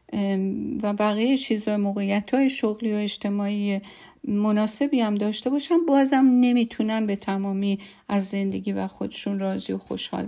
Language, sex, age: Persian, female, 50-69